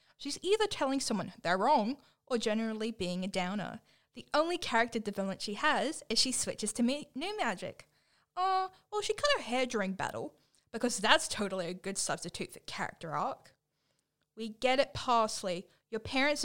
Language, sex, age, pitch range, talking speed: English, female, 10-29, 195-295 Hz, 170 wpm